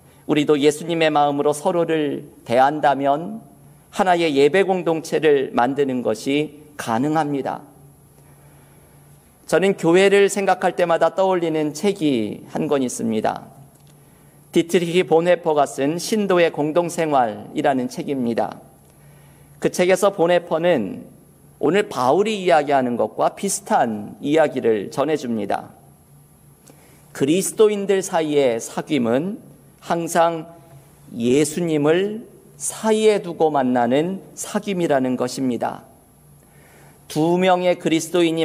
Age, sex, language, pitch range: 50-69, male, Korean, 145-180 Hz